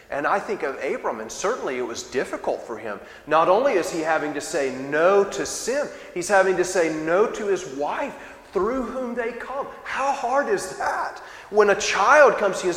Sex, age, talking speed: male, 30-49, 210 wpm